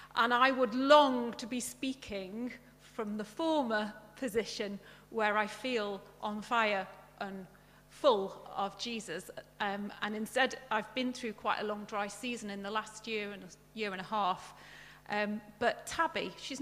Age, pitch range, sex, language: 40-59, 205-255 Hz, female, English